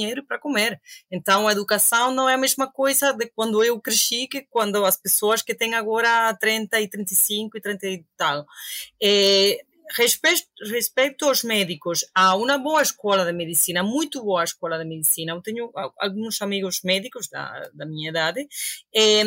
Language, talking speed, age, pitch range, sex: Portuguese, 170 wpm, 30-49, 190-260 Hz, female